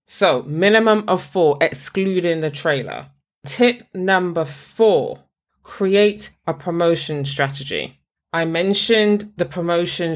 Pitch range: 155-205 Hz